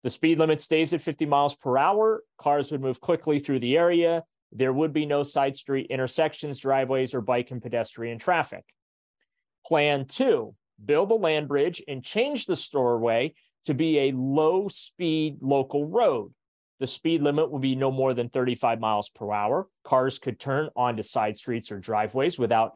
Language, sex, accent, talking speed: English, male, American, 175 wpm